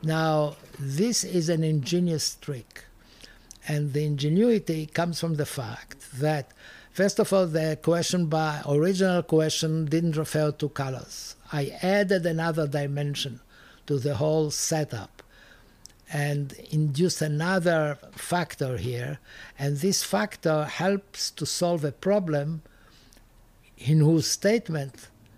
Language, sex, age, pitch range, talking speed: English, male, 60-79, 135-170 Hz, 115 wpm